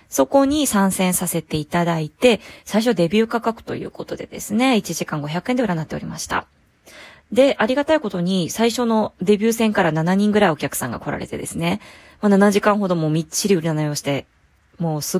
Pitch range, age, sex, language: 160-245 Hz, 20-39, female, Japanese